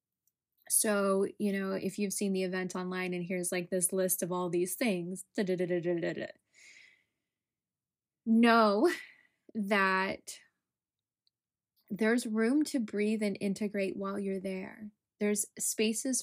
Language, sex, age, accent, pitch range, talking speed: English, female, 20-39, American, 185-210 Hz, 145 wpm